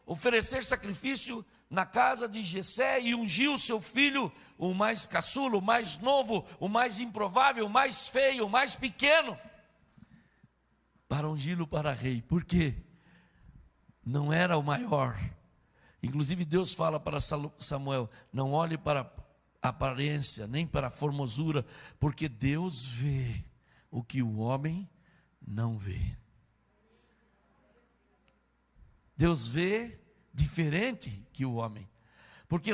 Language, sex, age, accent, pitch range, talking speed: Portuguese, male, 60-79, Brazilian, 140-215 Hz, 120 wpm